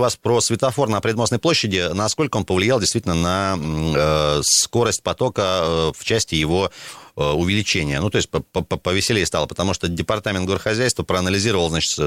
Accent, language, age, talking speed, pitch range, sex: native, Russian, 30-49, 150 wpm, 85-115 Hz, male